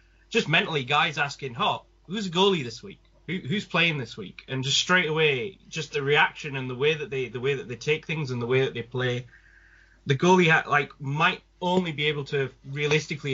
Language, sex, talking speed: English, male, 220 wpm